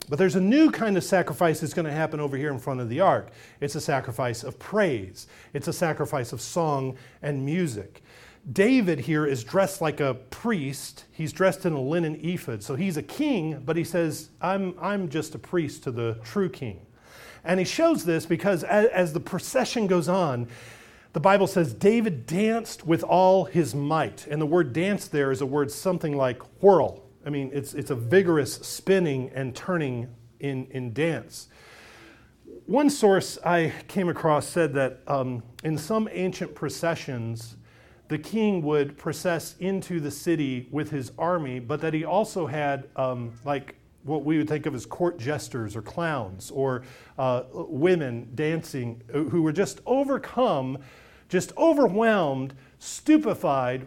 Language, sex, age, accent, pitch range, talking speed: English, male, 40-59, American, 135-180 Hz, 170 wpm